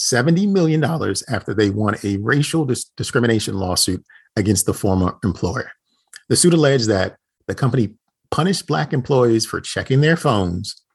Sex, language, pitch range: male, English, 100-130 Hz